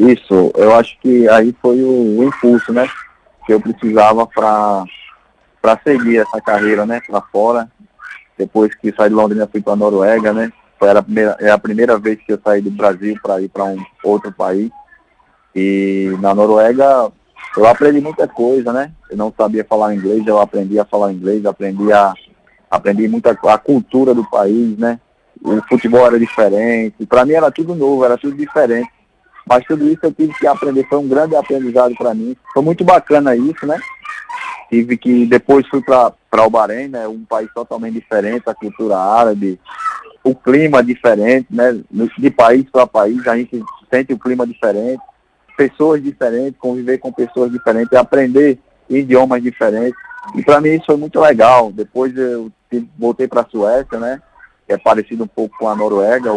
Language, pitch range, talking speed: Portuguese, 105-130 Hz, 175 wpm